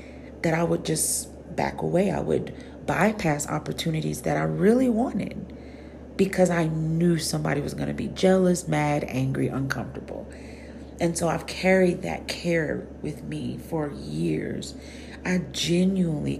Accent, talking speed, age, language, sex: American, 140 wpm, 40-59, English, female